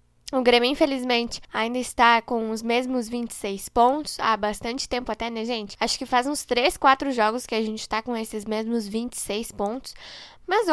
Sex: female